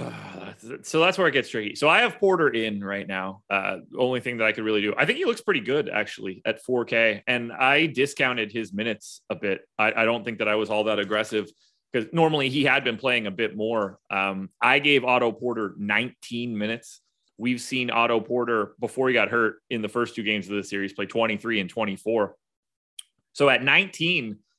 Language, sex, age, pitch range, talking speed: English, male, 30-49, 110-140 Hz, 210 wpm